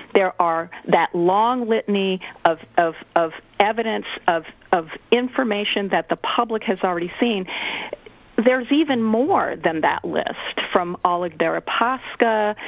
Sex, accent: female, American